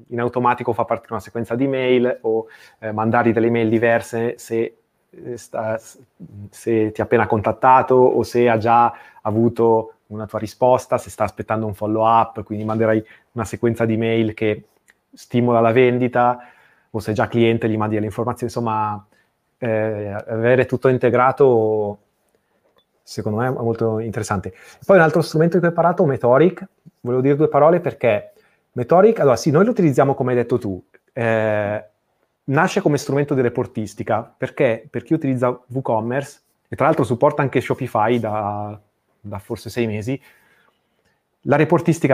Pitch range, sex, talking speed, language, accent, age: 110-130 Hz, male, 160 wpm, Italian, native, 30-49